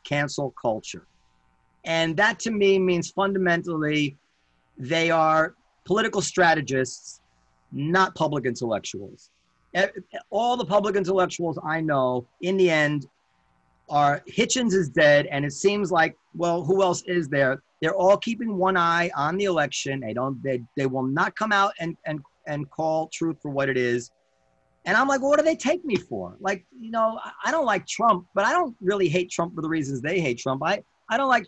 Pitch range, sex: 140-190 Hz, male